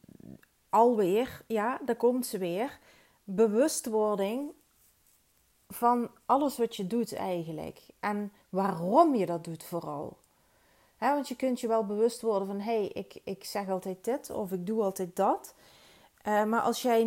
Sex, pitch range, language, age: female, 175-225 Hz, Dutch, 30-49